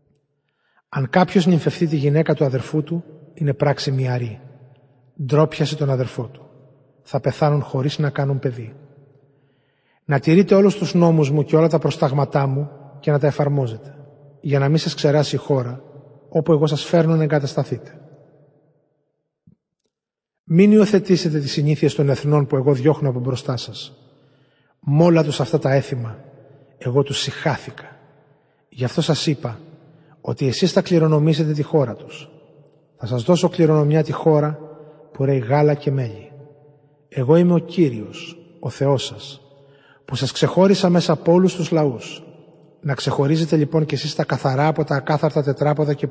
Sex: male